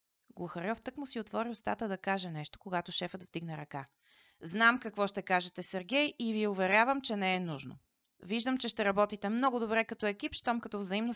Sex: female